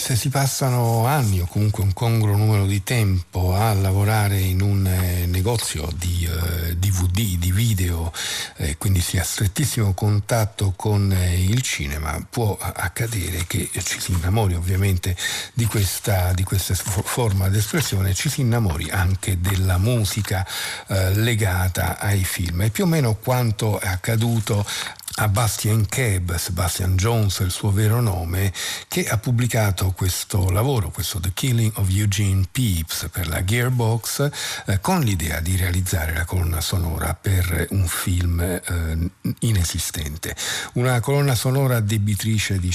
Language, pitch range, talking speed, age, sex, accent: Italian, 90-110 Hz, 145 wpm, 50-69, male, native